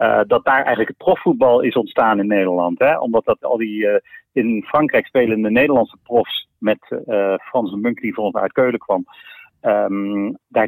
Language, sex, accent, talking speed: Dutch, male, Dutch, 190 wpm